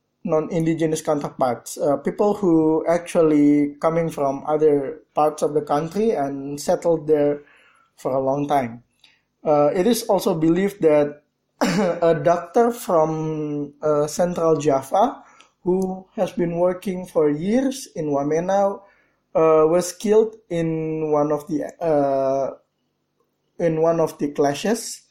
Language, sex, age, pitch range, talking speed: English, male, 20-39, 150-190 Hz, 125 wpm